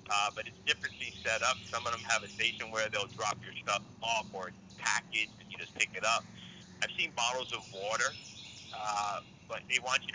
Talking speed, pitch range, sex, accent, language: 215 wpm, 110-130 Hz, male, American, English